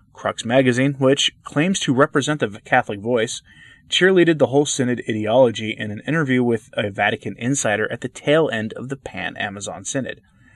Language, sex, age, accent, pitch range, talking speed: English, male, 30-49, American, 105-135 Hz, 165 wpm